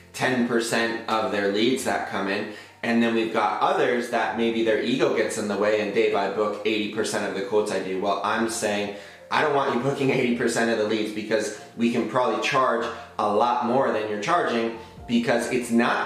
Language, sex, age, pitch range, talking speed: English, male, 20-39, 105-120 Hz, 210 wpm